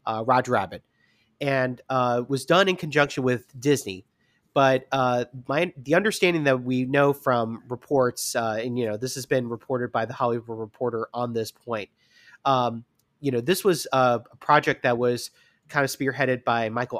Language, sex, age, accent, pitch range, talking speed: English, male, 30-49, American, 115-140 Hz, 180 wpm